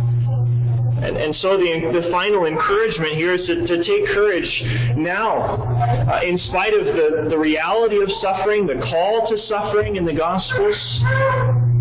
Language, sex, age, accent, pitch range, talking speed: English, male, 40-59, American, 120-170 Hz, 150 wpm